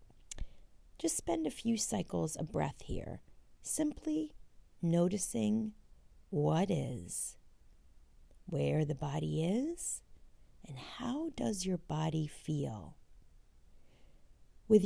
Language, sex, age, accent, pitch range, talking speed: English, female, 40-59, American, 145-225 Hz, 95 wpm